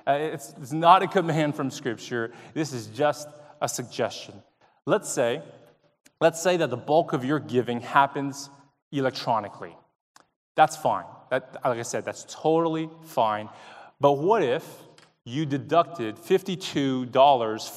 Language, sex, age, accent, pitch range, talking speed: English, male, 20-39, American, 125-165 Hz, 130 wpm